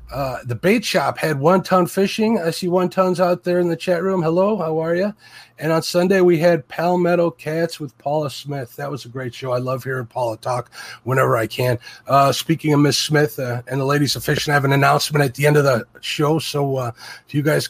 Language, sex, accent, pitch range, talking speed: English, male, American, 135-180 Hz, 240 wpm